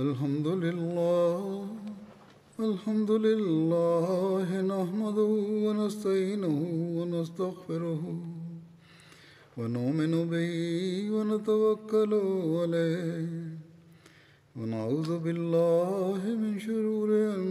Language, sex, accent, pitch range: Tamil, male, native, 165-210 Hz